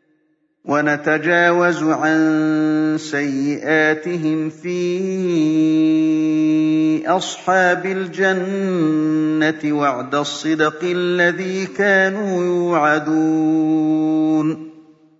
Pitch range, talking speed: 155-190 Hz, 45 wpm